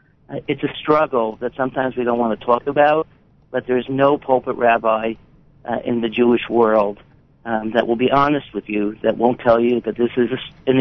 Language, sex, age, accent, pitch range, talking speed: English, male, 50-69, American, 120-140 Hz, 205 wpm